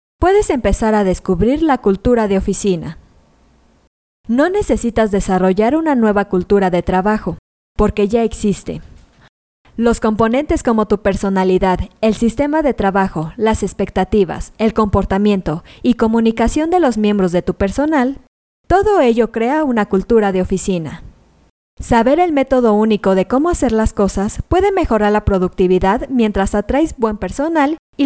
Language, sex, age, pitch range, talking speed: Spanish, female, 20-39, 195-265 Hz, 140 wpm